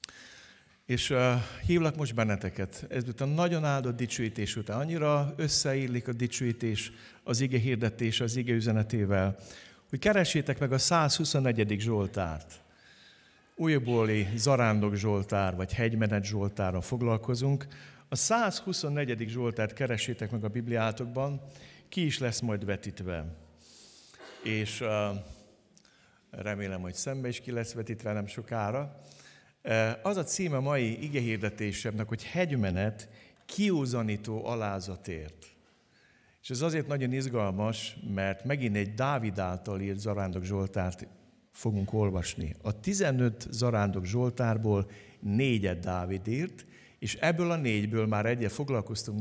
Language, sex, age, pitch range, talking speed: Hungarian, male, 60-79, 100-130 Hz, 115 wpm